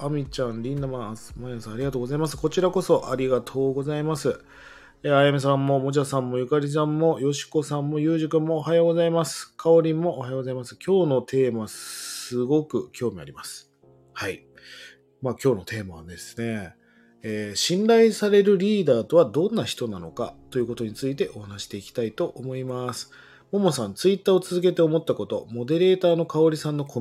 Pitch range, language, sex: 115-165 Hz, Japanese, male